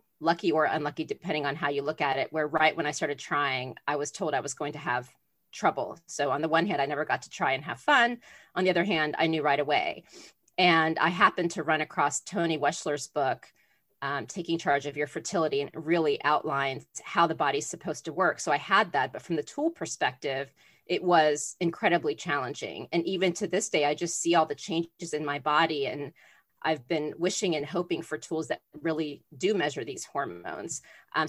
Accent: American